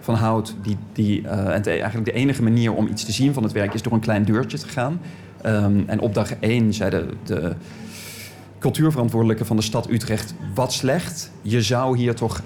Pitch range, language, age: 105-125 Hz, Dutch, 40-59